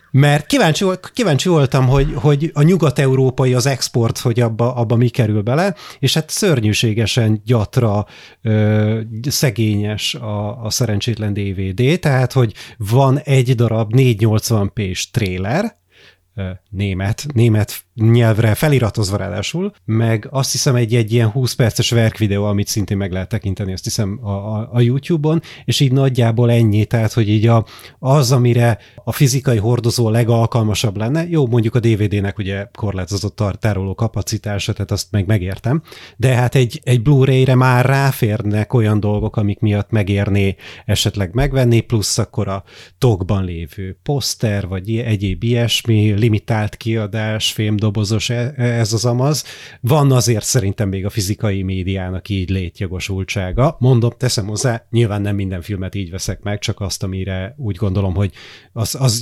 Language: Hungarian